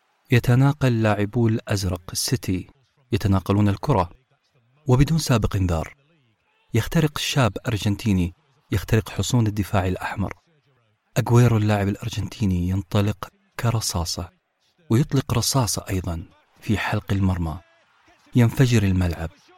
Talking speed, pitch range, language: 90 wpm, 100-135 Hz, Arabic